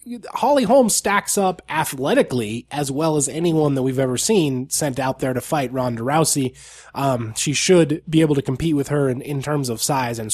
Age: 20-39